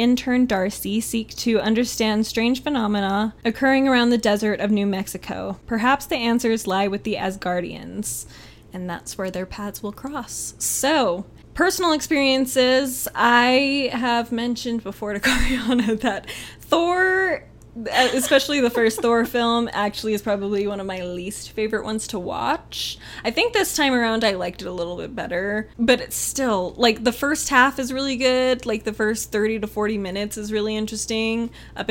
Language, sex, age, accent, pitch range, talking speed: English, female, 10-29, American, 195-240 Hz, 165 wpm